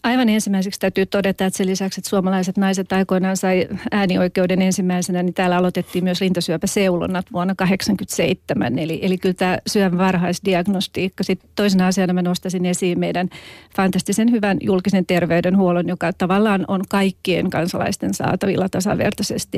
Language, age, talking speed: Finnish, 40-59, 135 wpm